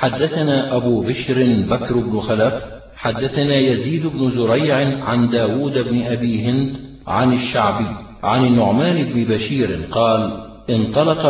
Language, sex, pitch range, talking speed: Arabic, male, 115-140 Hz, 120 wpm